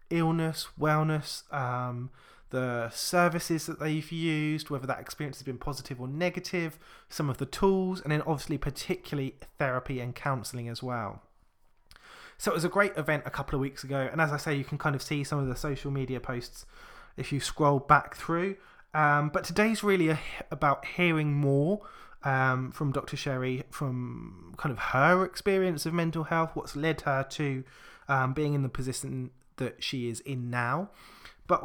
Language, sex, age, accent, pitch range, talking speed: English, male, 20-39, British, 130-160 Hz, 180 wpm